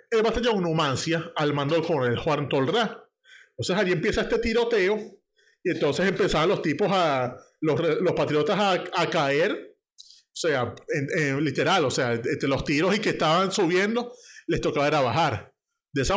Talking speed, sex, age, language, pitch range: 165 wpm, male, 30-49, Spanish, 160-225 Hz